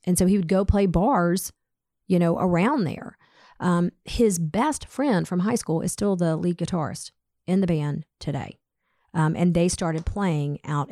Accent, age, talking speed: American, 40-59, 180 wpm